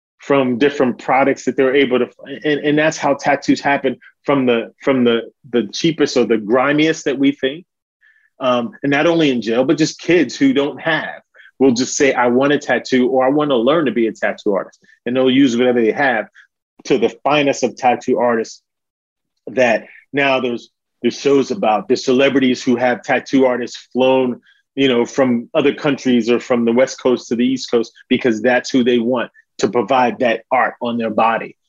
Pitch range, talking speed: 120-140 Hz, 195 wpm